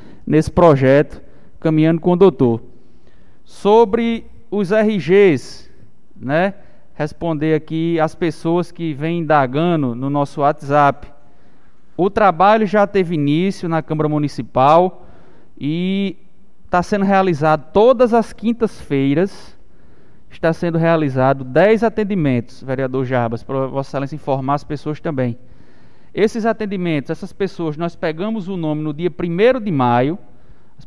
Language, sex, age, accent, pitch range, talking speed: Portuguese, male, 20-39, Brazilian, 145-205 Hz, 120 wpm